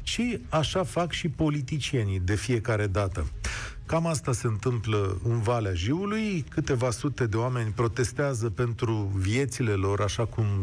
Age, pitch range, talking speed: 40-59, 115-155 Hz, 140 wpm